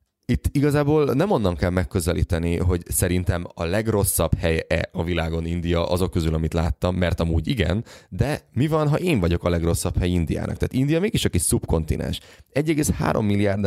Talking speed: 165 wpm